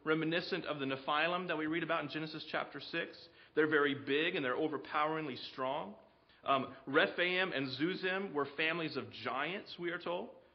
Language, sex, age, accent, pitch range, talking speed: English, male, 40-59, American, 140-175 Hz, 170 wpm